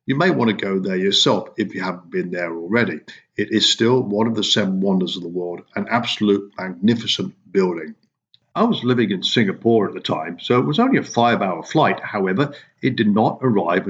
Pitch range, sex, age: 100-140 Hz, male, 50-69